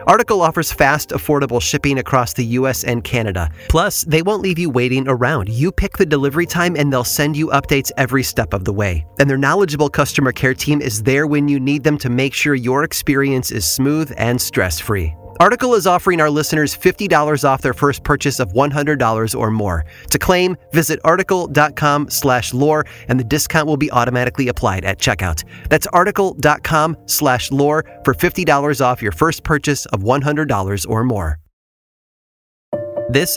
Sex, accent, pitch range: male, American, 120-155 Hz